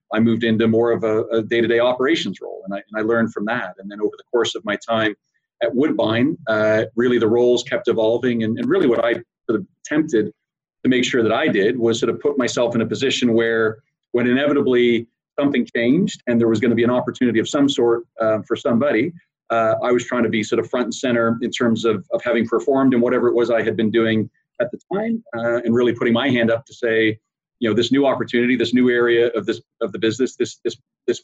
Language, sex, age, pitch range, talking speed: English, male, 40-59, 110-120 Hz, 245 wpm